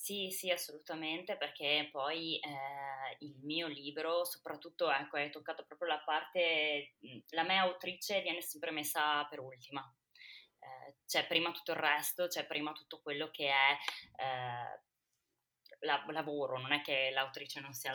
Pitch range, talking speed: 145-170 Hz, 145 wpm